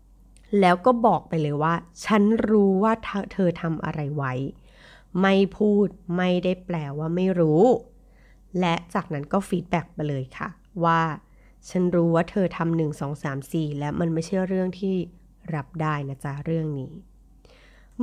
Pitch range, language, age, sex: 155-195 Hz, Thai, 30-49, female